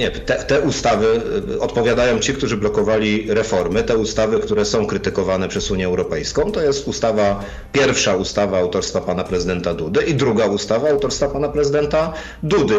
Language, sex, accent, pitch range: Polish, male, native, 100-130 Hz